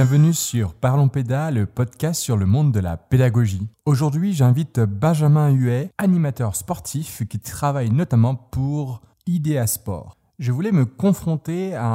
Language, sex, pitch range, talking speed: French, male, 110-150 Hz, 140 wpm